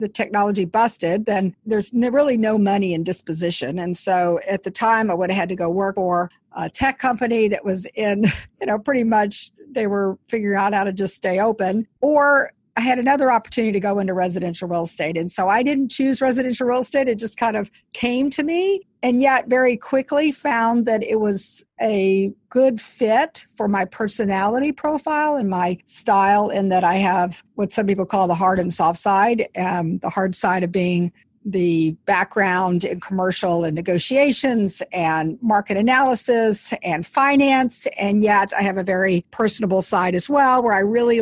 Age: 50-69